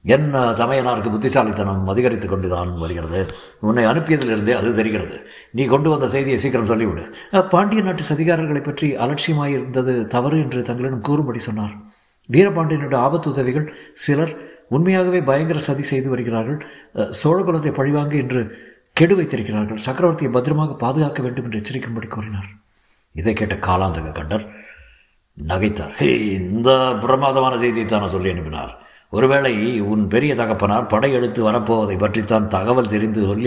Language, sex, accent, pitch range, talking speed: Tamil, male, native, 105-145 Hz, 120 wpm